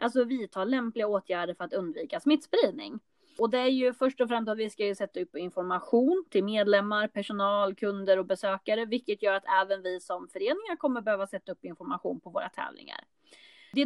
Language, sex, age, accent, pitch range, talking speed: Swedish, female, 20-39, native, 195-260 Hz, 195 wpm